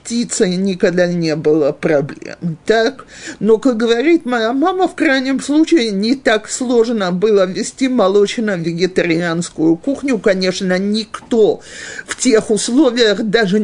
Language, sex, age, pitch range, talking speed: Russian, male, 50-69, 180-250 Hz, 115 wpm